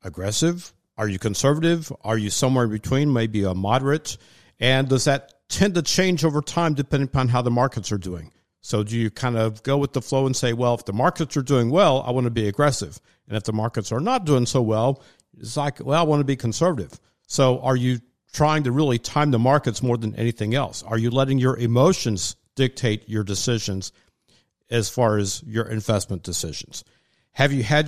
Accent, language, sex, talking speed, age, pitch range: American, English, male, 210 wpm, 50-69, 110-135 Hz